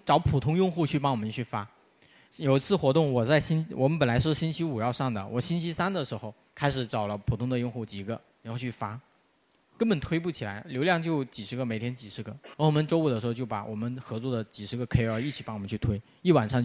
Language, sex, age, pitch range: Chinese, male, 20-39, 115-160 Hz